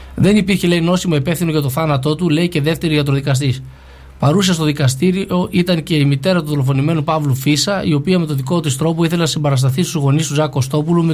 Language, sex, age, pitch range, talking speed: Greek, male, 20-39, 140-175 Hz, 210 wpm